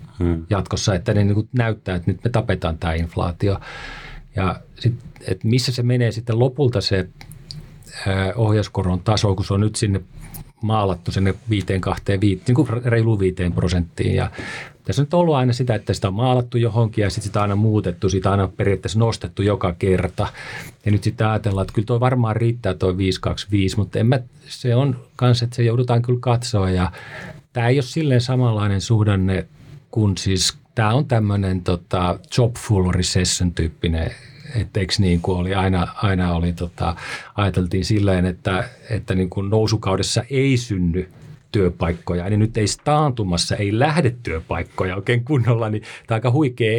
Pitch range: 95-125 Hz